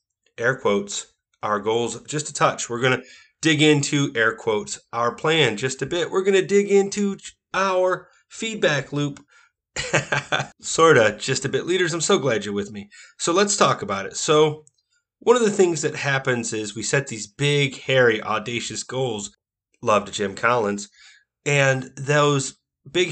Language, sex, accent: English, male, American